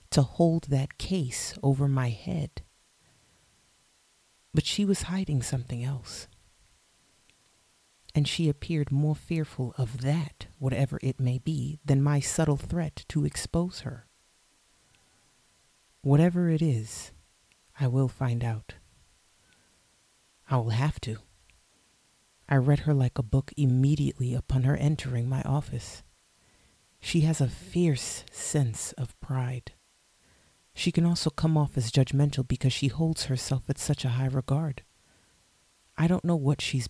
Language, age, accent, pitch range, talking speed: English, 40-59, American, 115-145 Hz, 135 wpm